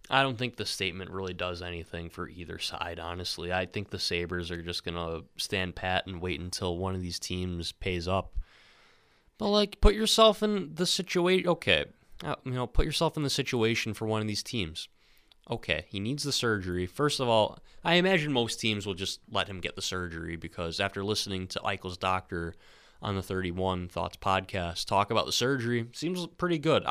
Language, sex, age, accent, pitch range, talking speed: English, male, 20-39, American, 90-115 Hz, 200 wpm